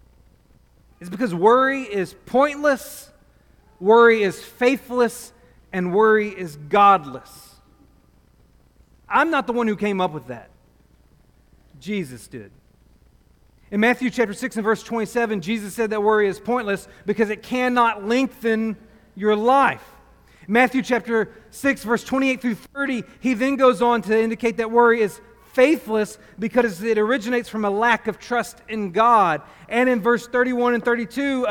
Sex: male